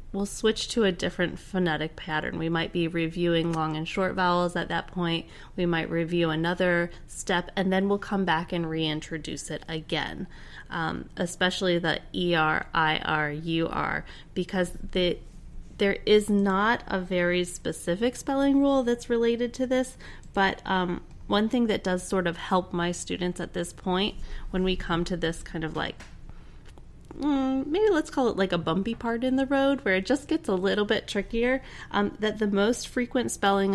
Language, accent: English, American